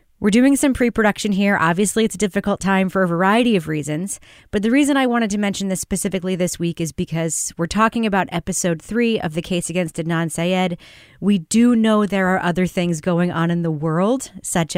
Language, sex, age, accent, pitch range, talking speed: English, female, 30-49, American, 165-205 Hz, 210 wpm